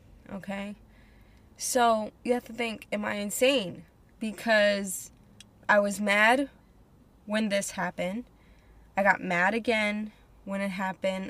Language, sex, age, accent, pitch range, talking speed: English, female, 10-29, American, 185-240 Hz, 120 wpm